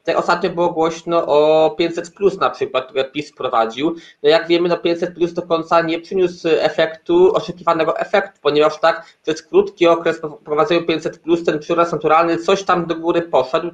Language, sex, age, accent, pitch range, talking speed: Polish, male, 20-39, native, 160-190 Hz, 175 wpm